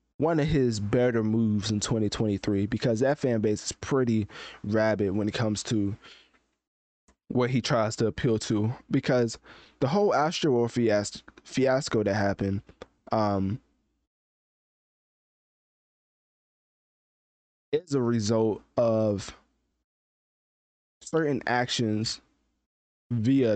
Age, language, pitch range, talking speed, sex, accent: 20-39, English, 105-130 Hz, 100 wpm, male, American